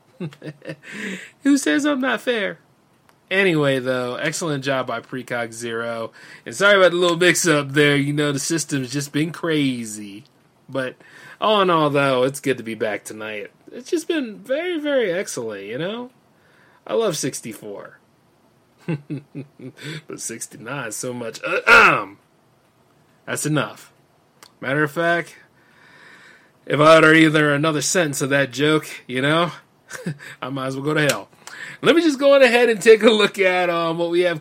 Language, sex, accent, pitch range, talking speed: English, male, American, 130-170 Hz, 155 wpm